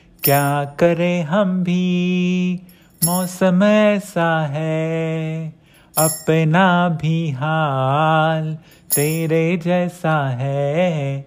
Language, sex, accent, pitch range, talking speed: Marathi, male, native, 150-180 Hz, 65 wpm